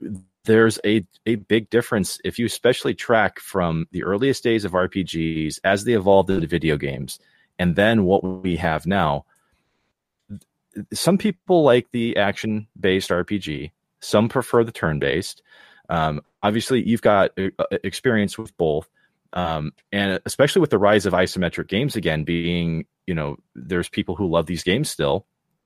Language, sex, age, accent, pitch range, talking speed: English, male, 30-49, American, 80-105 Hz, 155 wpm